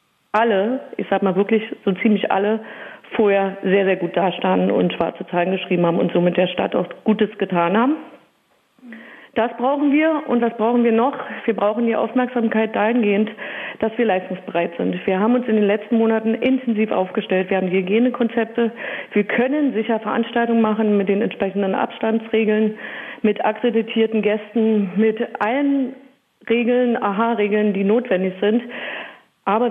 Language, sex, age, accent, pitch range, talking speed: German, female, 50-69, German, 200-235 Hz, 150 wpm